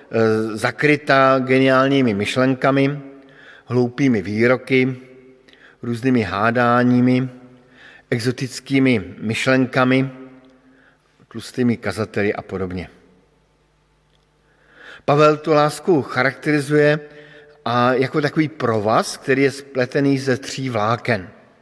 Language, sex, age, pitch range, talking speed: Slovak, male, 50-69, 115-135 Hz, 70 wpm